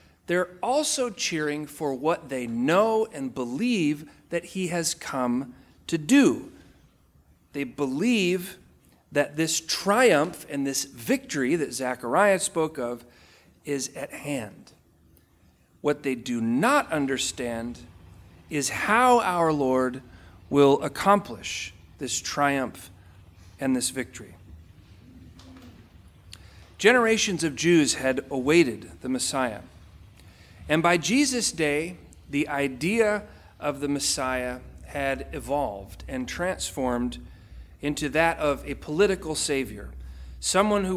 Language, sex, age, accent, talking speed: English, male, 40-59, American, 110 wpm